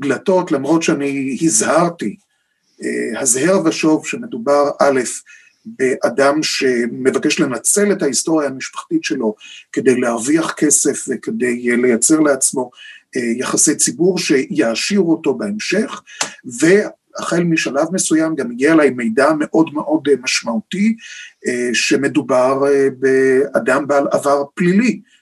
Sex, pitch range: male, 135-195 Hz